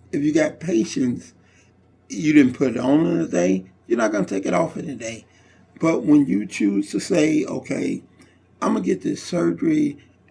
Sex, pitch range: male, 115-165 Hz